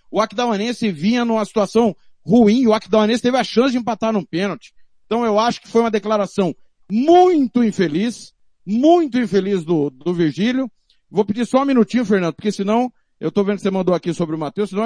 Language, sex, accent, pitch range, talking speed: Portuguese, male, Brazilian, 190-240 Hz, 195 wpm